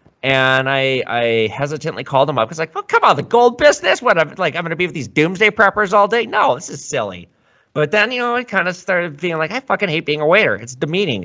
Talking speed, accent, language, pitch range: 275 wpm, American, English, 110-155 Hz